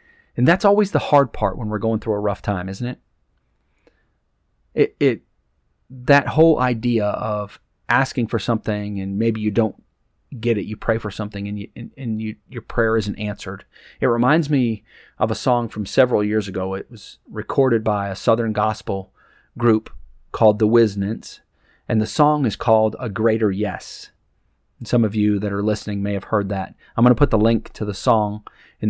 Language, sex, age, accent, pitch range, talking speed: English, male, 40-59, American, 100-120 Hz, 195 wpm